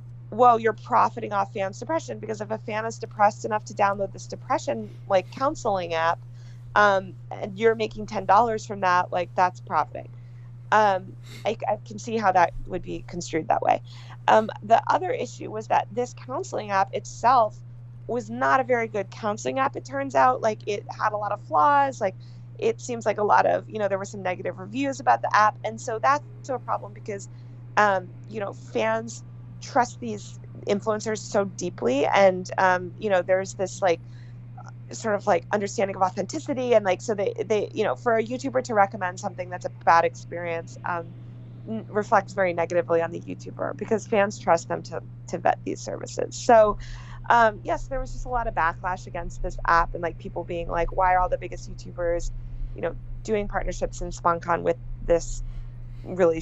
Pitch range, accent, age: 120-195 Hz, American, 20-39